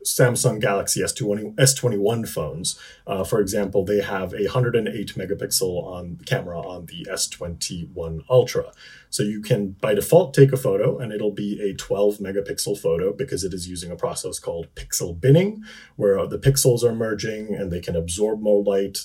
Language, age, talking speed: English, 30-49, 165 wpm